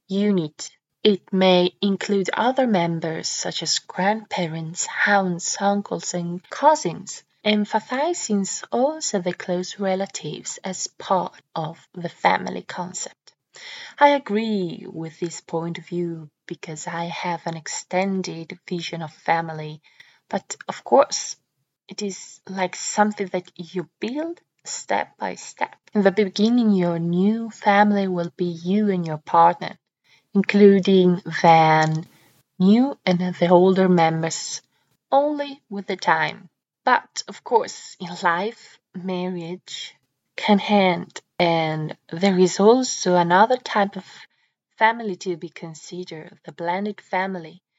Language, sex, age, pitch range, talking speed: English, female, 20-39, 175-205 Hz, 120 wpm